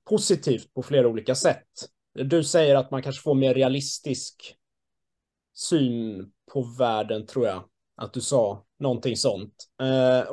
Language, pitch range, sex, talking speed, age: Swedish, 125-150 Hz, male, 140 wpm, 30-49